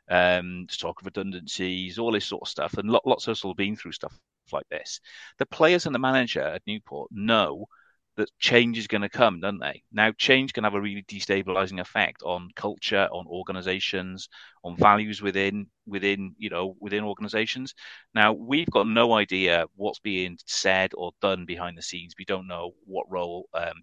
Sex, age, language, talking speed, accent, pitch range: male, 30-49, English, 180 wpm, British, 95-115 Hz